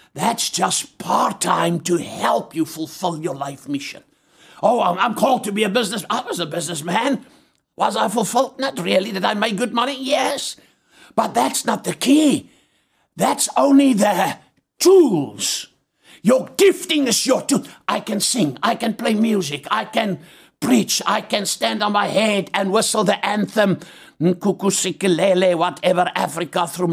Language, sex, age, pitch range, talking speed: English, male, 60-79, 160-215 Hz, 155 wpm